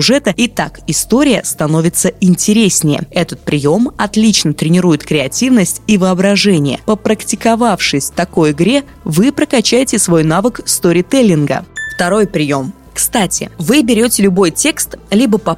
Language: Russian